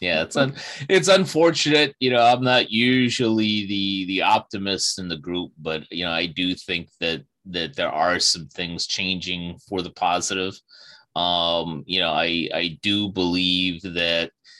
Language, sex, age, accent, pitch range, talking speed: English, male, 30-49, American, 90-125 Hz, 165 wpm